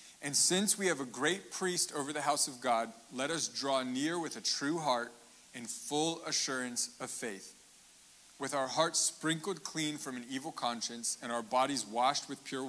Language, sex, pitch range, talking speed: English, male, 135-185 Hz, 190 wpm